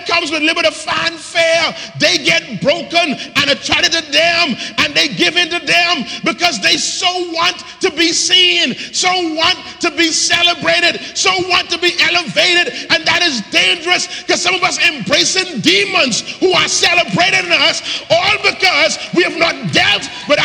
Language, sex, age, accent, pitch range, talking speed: English, male, 40-59, American, 275-355 Hz, 165 wpm